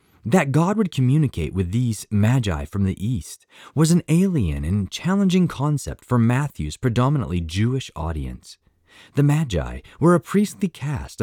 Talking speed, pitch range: 145 wpm, 95-155 Hz